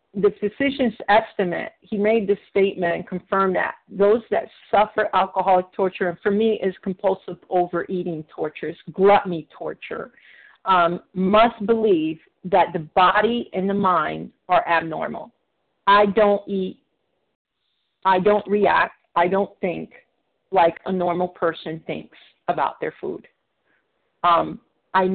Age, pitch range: 50-69, 180-210 Hz